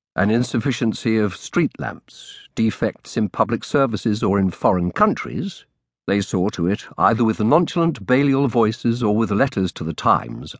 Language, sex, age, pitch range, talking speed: English, male, 50-69, 95-130 Hz, 160 wpm